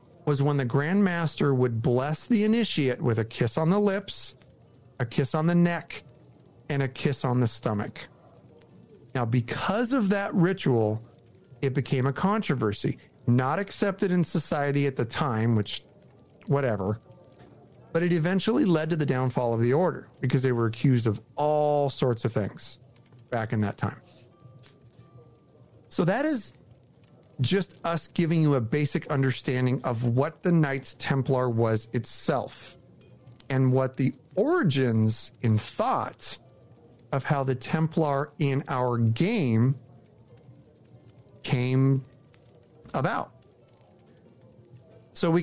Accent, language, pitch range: American, English, 120-150 Hz